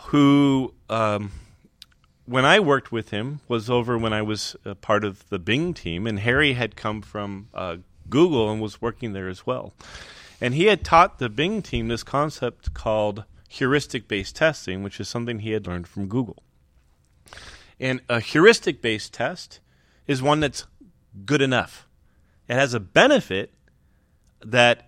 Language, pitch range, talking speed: English, 100-135 Hz, 155 wpm